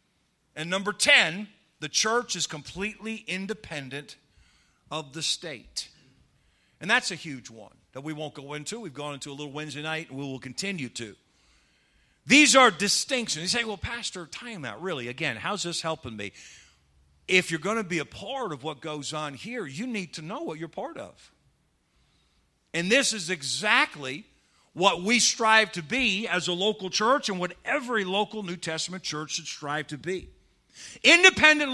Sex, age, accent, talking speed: male, 50-69, American, 175 wpm